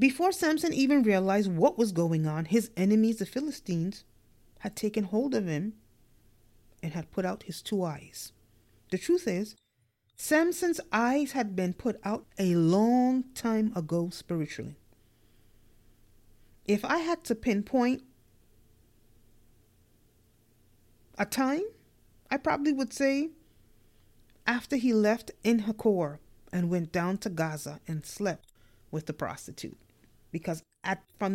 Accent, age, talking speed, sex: American, 30-49, 130 wpm, female